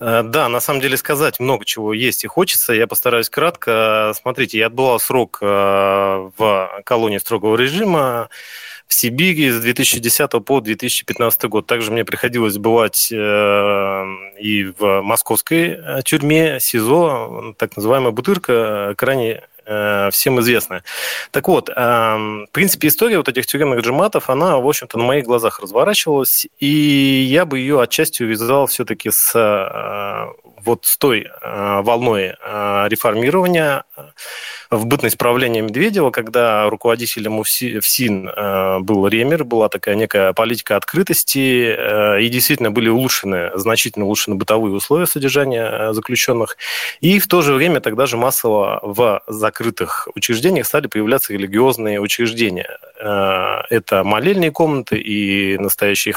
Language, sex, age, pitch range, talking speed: Russian, male, 20-39, 105-135 Hz, 125 wpm